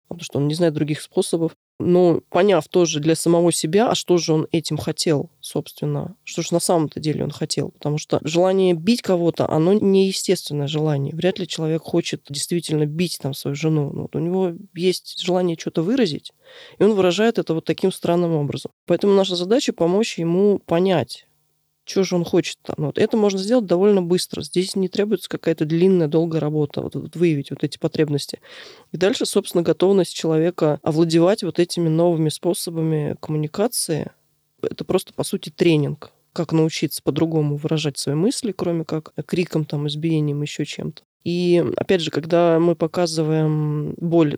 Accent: native